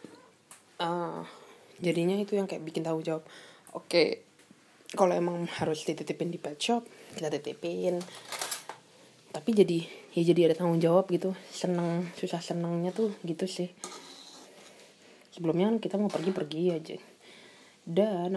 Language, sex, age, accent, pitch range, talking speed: Indonesian, female, 20-39, native, 165-195 Hz, 125 wpm